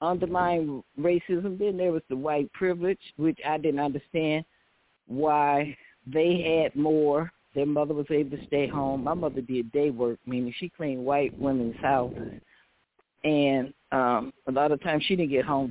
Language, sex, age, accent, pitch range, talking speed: English, female, 50-69, American, 135-160 Hz, 170 wpm